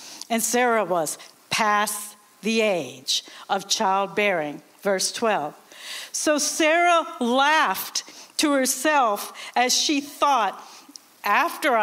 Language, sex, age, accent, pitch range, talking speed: English, female, 60-79, American, 205-290 Hz, 95 wpm